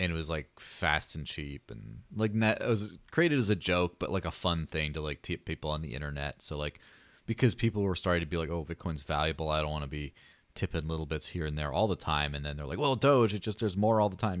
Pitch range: 80-110 Hz